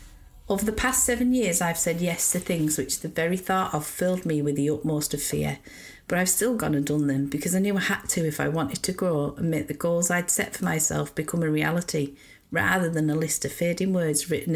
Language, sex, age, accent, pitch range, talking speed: English, female, 40-59, British, 150-185 Hz, 245 wpm